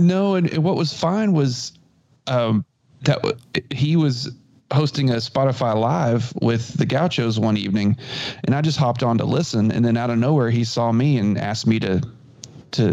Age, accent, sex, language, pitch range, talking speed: 30-49, American, male, English, 110-140 Hz, 190 wpm